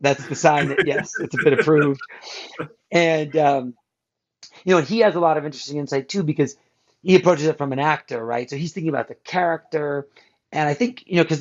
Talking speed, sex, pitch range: 215 wpm, male, 130-155 Hz